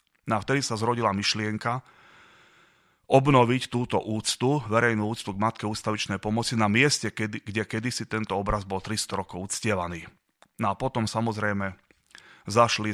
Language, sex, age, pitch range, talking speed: Slovak, male, 30-49, 100-110 Hz, 145 wpm